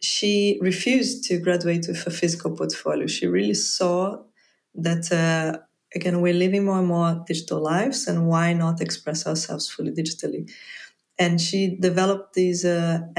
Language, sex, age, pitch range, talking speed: English, female, 20-39, 165-195 Hz, 150 wpm